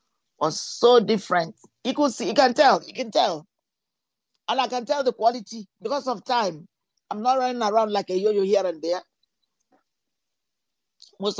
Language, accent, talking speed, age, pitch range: English, Nigerian, 170 wpm, 50-69, 160-215 Hz